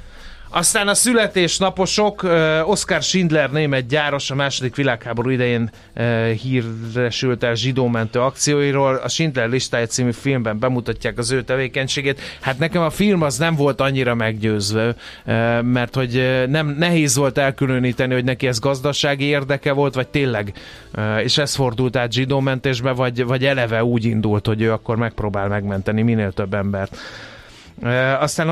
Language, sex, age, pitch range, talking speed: Hungarian, male, 30-49, 115-145 Hz, 140 wpm